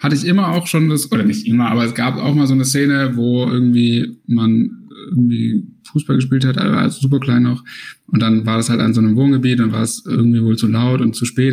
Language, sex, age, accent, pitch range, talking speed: German, male, 10-29, German, 120-145 Hz, 245 wpm